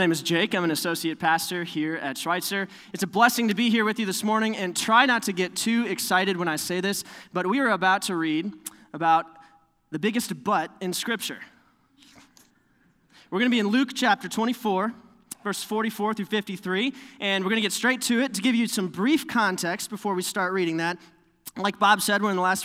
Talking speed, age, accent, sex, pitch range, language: 215 wpm, 20-39, American, male, 160-210 Hz, English